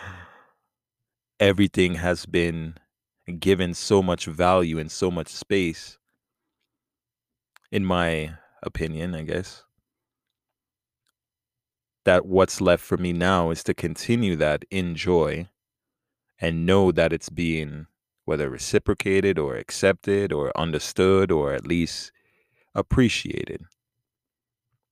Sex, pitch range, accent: male, 80-100 Hz, American